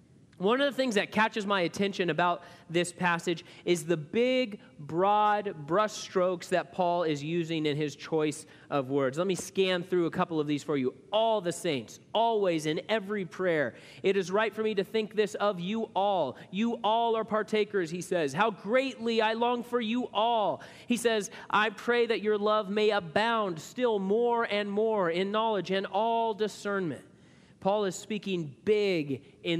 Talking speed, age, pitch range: 180 wpm, 30-49, 165-215 Hz